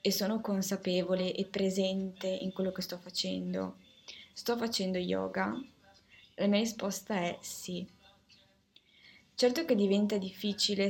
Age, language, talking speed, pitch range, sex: 20-39, Italian, 120 wpm, 185-205 Hz, female